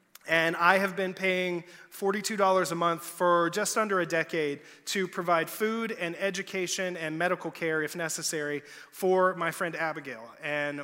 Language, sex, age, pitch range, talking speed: English, male, 30-49, 170-205 Hz, 155 wpm